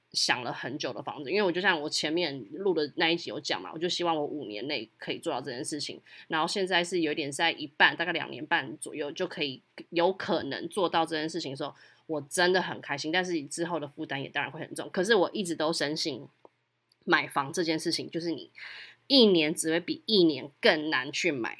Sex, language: female, Chinese